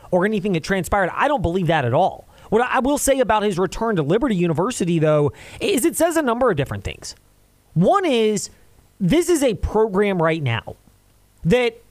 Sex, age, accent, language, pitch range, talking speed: male, 30-49, American, English, 155-230 Hz, 190 wpm